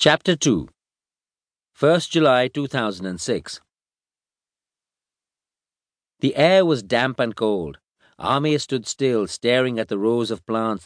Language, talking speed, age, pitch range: English, 110 wpm, 50-69, 110-150 Hz